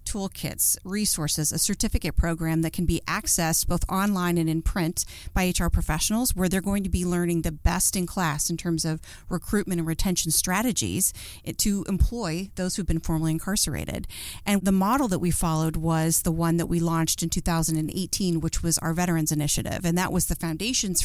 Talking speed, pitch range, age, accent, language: 185 wpm, 165-190 Hz, 40-59, American, English